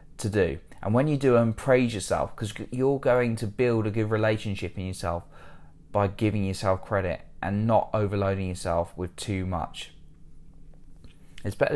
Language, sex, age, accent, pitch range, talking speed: English, male, 20-39, British, 95-125 Hz, 165 wpm